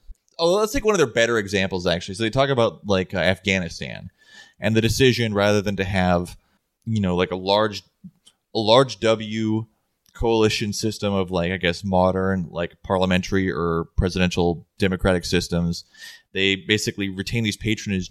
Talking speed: 160 wpm